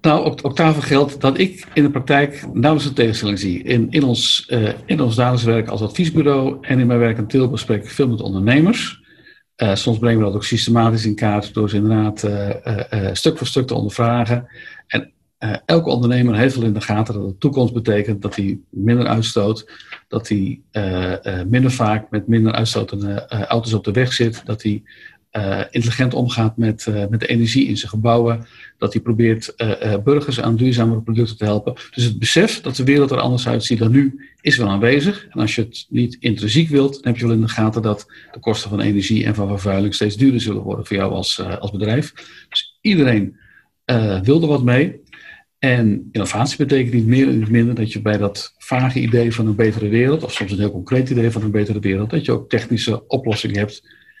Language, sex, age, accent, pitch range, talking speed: Dutch, male, 50-69, Dutch, 105-130 Hz, 210 wpm